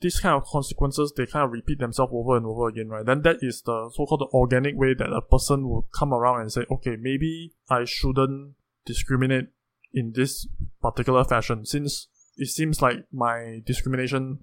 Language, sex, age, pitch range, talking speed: English, male, 20-39, 120-145 Hz, 185 wpm